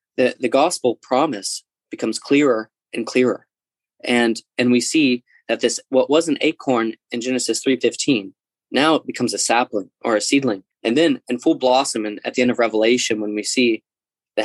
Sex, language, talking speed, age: male, English, 185 wpm, 20-39